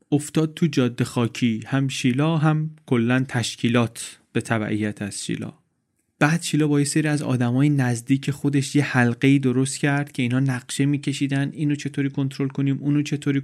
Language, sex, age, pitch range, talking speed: Persian, male, 30-49, 125-145 Hz, 155 wpm